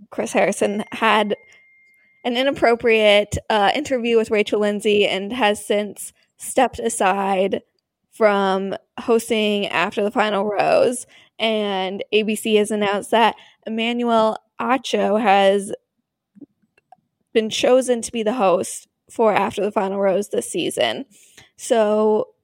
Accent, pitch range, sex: American, 205-235 Hz, female